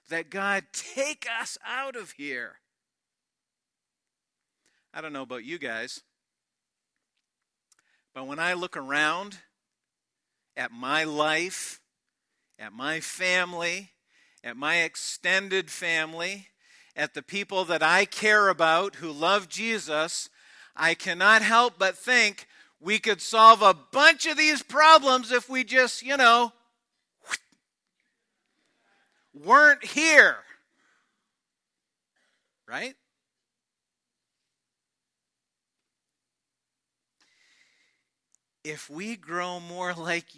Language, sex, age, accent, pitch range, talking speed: English, male, 50-69, American, 170-240 Hz, 95 wpm